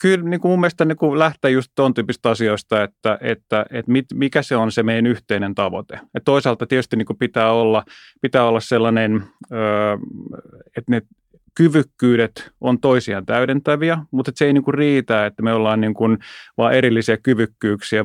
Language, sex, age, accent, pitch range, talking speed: Finnish, male, 30-49, native, 110-140 Hz, 180 wpm